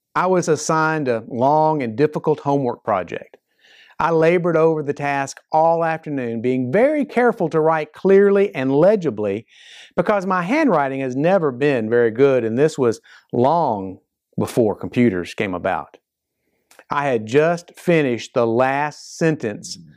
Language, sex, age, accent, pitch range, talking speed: English, male, 50-69, American, 125-175 Hz, 140 wpm